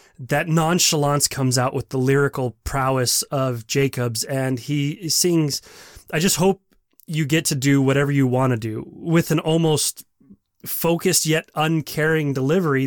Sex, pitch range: male, 130-160 Hz